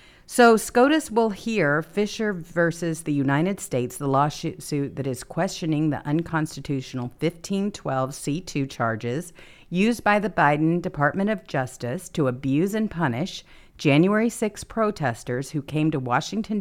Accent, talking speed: American, 130 wpm